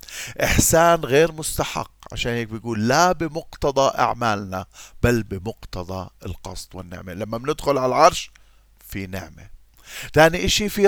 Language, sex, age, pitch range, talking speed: Arabic, male, 40-59, 105-165 Hz, 120 wpm